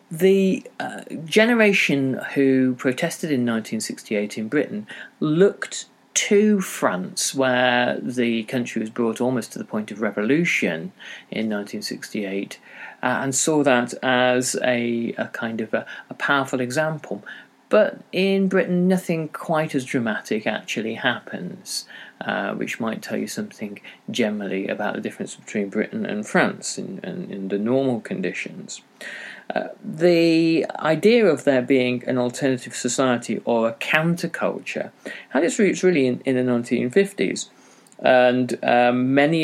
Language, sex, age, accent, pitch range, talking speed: English, male, 40-59, British, 120-170 Hz, 135 wpm